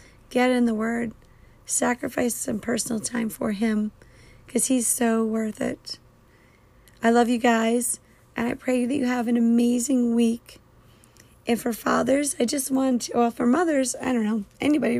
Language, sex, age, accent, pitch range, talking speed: English, female, 30-49, American, 220-255 Hz, 170 wpm